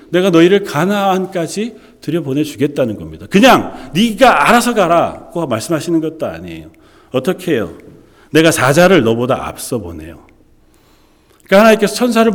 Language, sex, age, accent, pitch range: Korean, male, 40-59, native, 110-185 Hz